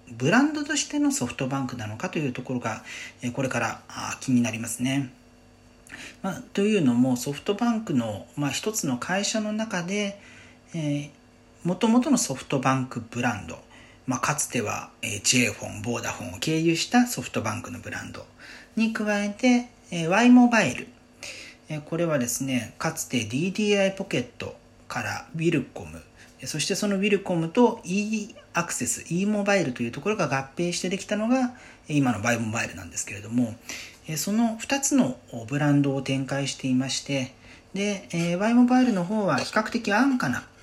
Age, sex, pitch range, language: 40-59, male, 120-200 Hz, Japanese